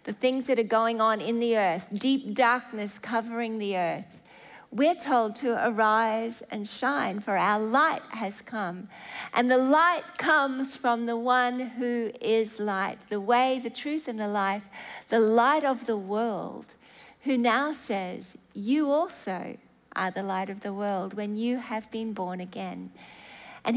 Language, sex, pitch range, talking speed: English, female, 210-260 Hz, 165 wpm